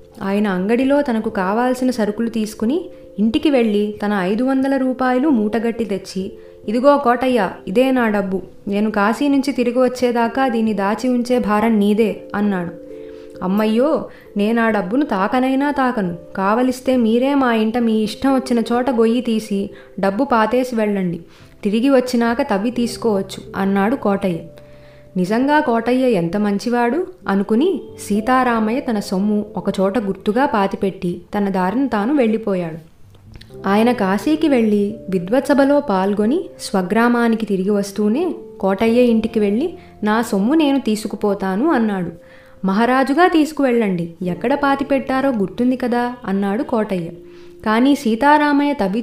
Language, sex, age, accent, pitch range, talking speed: Telugu, female, 20-39, native, 195-255 Hz, 115 wpm